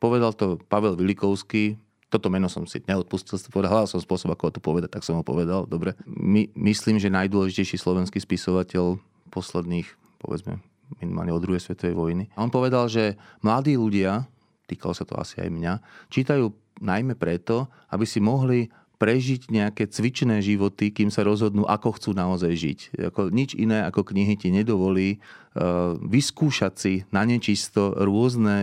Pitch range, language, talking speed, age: 95-110 Hz, Slovak, 150 wpm, 30-49